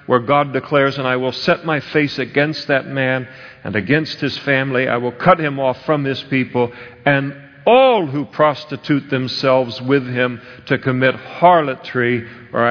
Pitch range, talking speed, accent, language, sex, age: 130-175 Hz, 165 wpm, American, English, male, 50-69